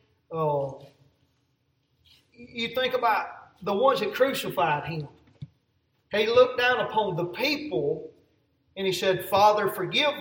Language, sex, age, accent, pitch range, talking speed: English, male, 40-59, American, 175-235 Hz, 120 wpm